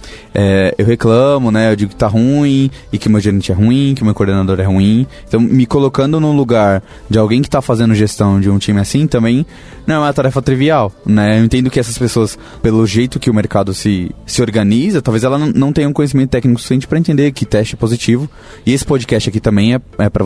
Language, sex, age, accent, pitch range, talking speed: Portuguese, male, 20-39, Brazilian, 110-135 Hz, 225 wpm